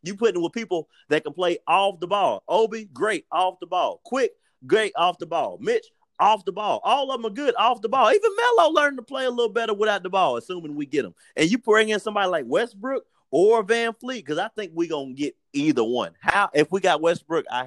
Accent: American